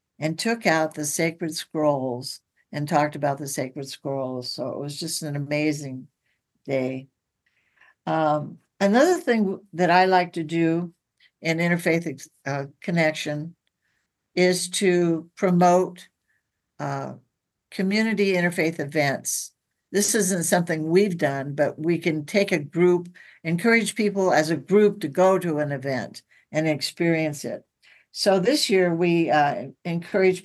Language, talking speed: English, 135 wpm